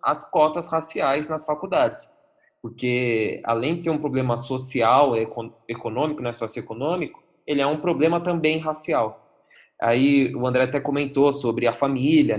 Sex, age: male, 20-39